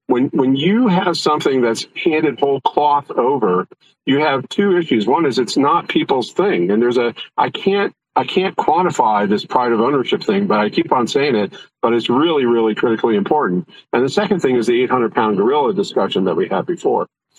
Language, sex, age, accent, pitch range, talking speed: English, male, 50-69, American, 115-190 Hz, 205 wpm